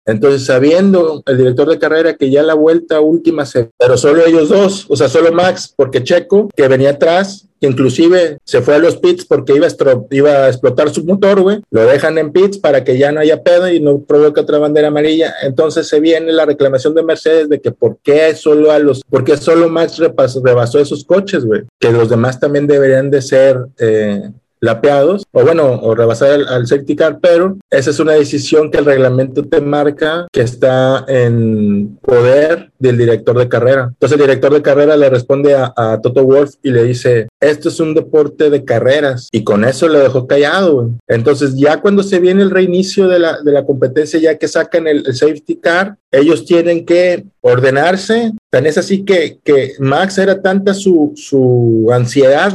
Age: 50-69